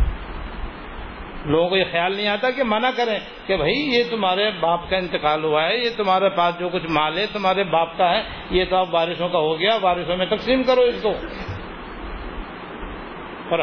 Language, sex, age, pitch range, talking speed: Urdu, male, 60-79, 170-215 Hz, 190 wpm